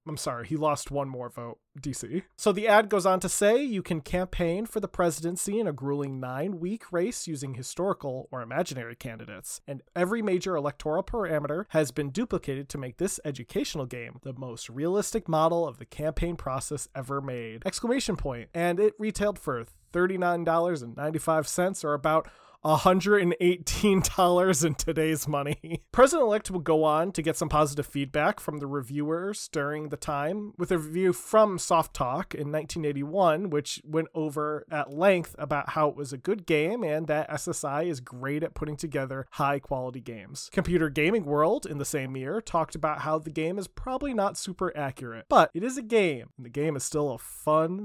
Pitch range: 145-185 Hz